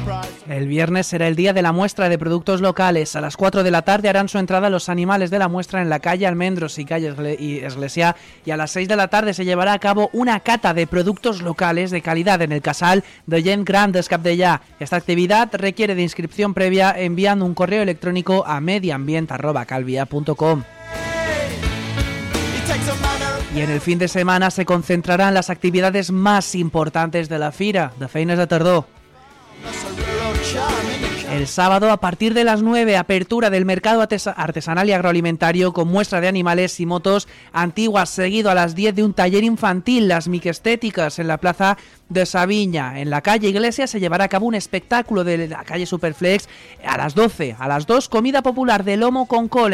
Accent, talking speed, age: Spanish, 180 wpm, 20-39